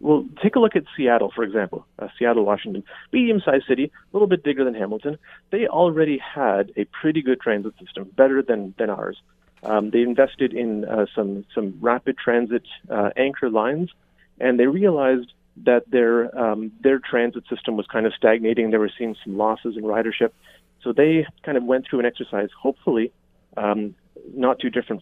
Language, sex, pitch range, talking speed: English, male, 110-145 Hz, 180 wpm